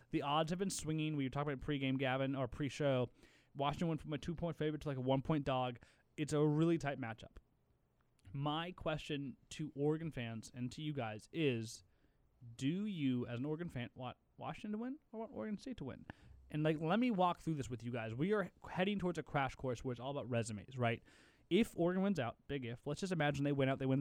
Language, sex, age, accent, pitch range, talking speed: English, male, 20-39, American, 125-155 Hz, 230 wpm